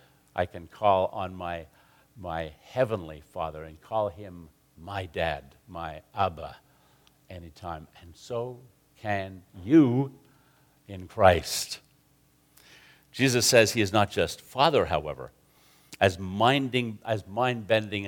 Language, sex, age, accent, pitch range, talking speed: English, male, 60-79, American, 100-135 Hz, 110 wpm